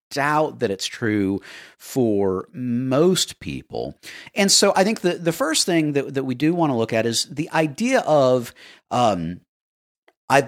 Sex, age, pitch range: male, 50-69, 125-180 Hz